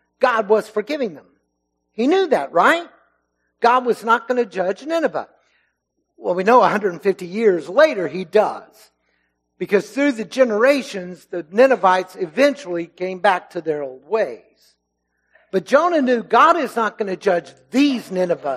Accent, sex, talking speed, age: American, male, 150 wpm, 60-79